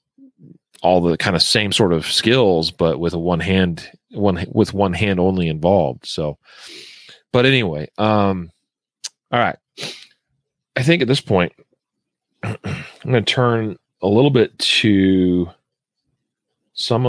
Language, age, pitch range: English, 40-59, 85-115 Hz